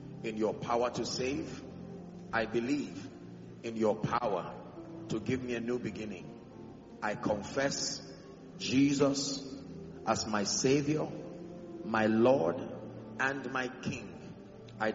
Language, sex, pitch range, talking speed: English, male, 110-135 Hz, 110 wpm